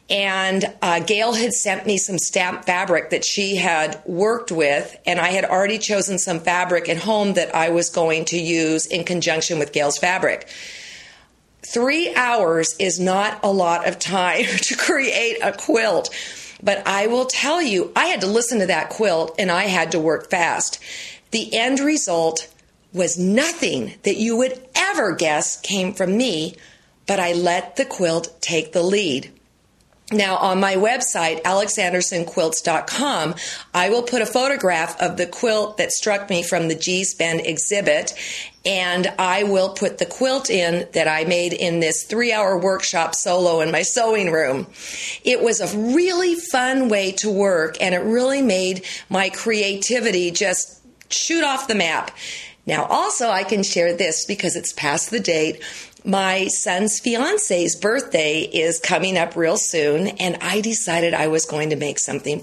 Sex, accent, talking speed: female, American, 165 wpm